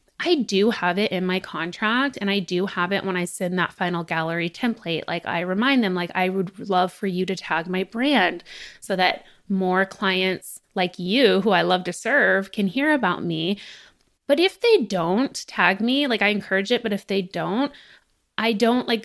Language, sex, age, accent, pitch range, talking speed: English, female, 20-39, American, 185-225 Hz, 205 wpm